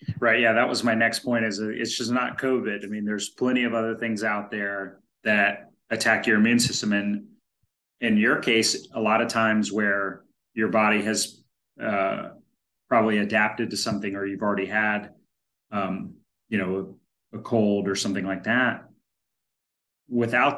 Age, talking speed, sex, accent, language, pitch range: 30-49, 170 wpm, male, American, English, 95-110 Hz